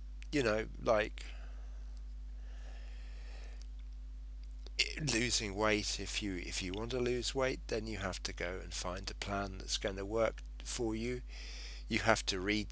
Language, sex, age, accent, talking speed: English, male, 40-59, British, 150 wpm